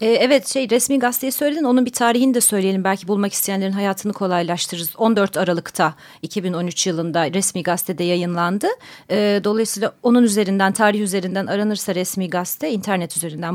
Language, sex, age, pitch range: Turkish, female, 40-59, 185-245 Hz